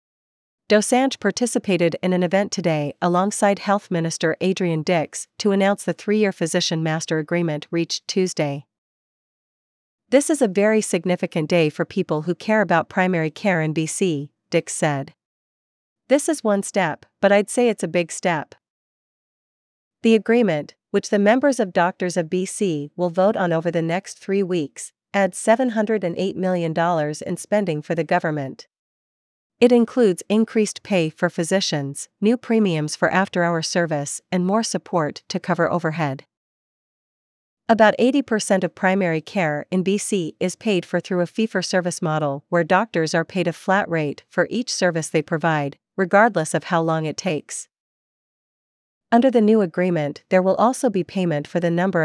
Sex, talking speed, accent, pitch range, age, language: female, 155 wpm, American, 165-205 Hz, 40-59, English